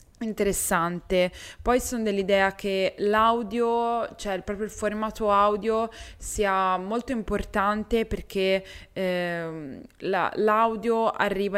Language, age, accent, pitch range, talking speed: Italian, 20-39, native, 185-215 Hz, 105 wpm